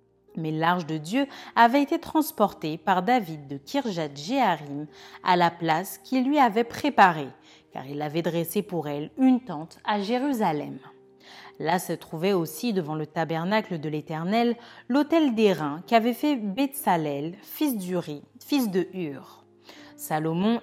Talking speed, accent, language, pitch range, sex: 145 wpm, French, French, 160-240 Hz, female